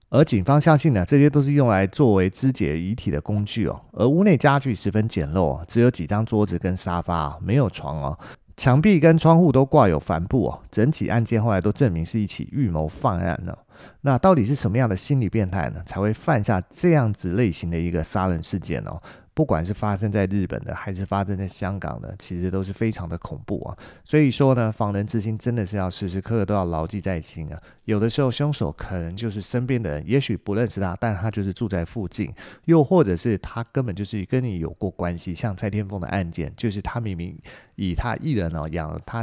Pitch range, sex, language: 90-125 Hz, male, Chinese